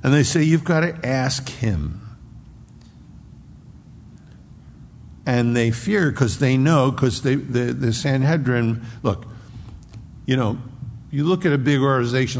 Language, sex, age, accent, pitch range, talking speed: English, male, 60-79, American, 115-135 Hz, 130 wpm